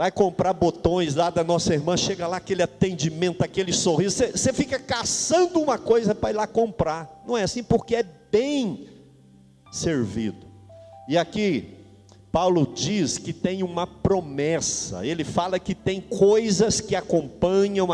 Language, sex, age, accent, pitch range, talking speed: Portuguese, male, 50-69, Brazilian, 170-225 Hz, 145 wpm